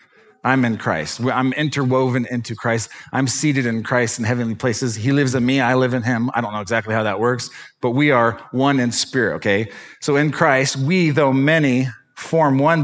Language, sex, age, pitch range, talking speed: English, male, 40-59, 110-135 Hz, 205 wpm